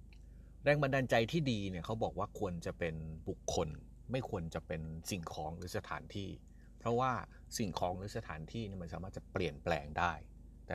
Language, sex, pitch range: Thai, male, 80-105 Hz